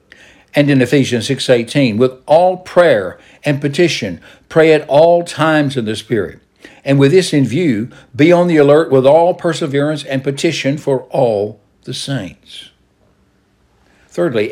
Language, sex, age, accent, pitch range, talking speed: English, male, 60-79, American, 105-145 Hz, 145 wpm